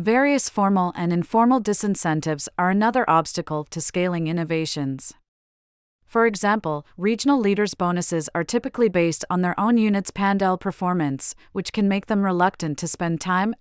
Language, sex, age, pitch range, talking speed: English, female, 30-49, 160-200 Hz, 145 wpm